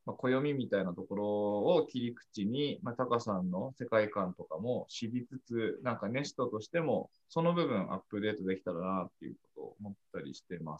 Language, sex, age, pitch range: Japanese, male, 20-39, 95-145 Hz